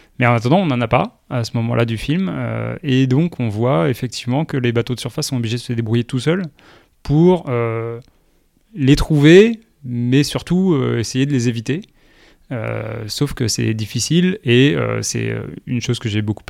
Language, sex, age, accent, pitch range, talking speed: French, male, 20-39, French, 115-140 Hz, 195 wpm